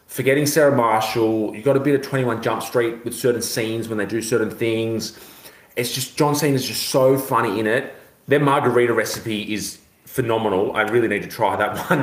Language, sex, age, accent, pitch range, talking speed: English, male, 30-49, Australian, 105-135 Hz, 200 wpm